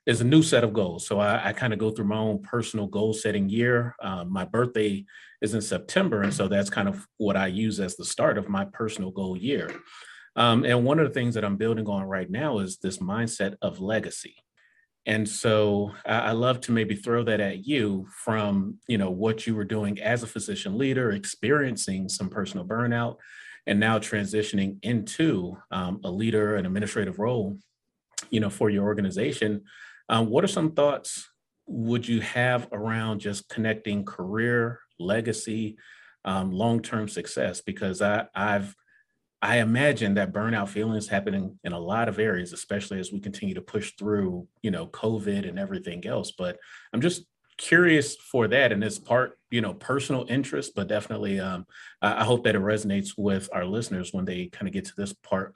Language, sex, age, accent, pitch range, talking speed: English, male, 30-49, American, 100-115 Hz, 190 wpm